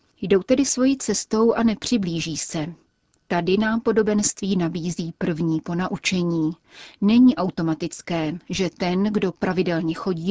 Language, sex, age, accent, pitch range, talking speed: Czech, female, 30-49, native, 170-205 Hz, 115 wpm